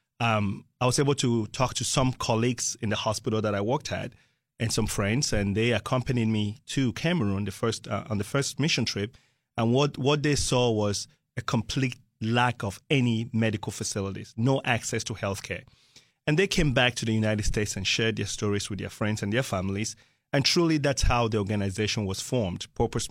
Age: 30-49